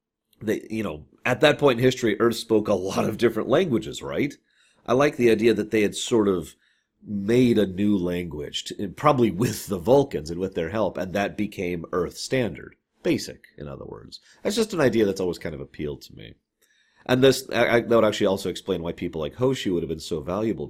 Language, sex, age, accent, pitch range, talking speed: English, male, 40-59, American, 90-120 Hz, 215 wpm